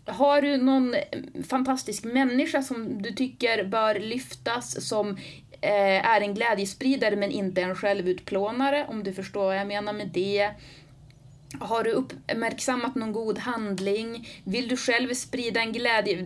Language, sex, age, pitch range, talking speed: Swedish, female, 30-49, 180-230 Hz, 140 wpm